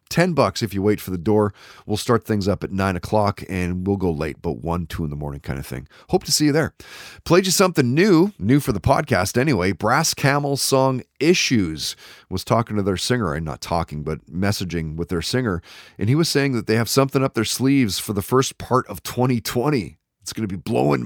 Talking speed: 230 wpm